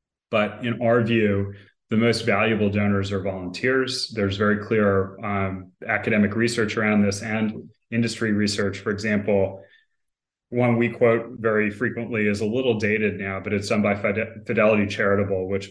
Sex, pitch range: male, 100-110 Hz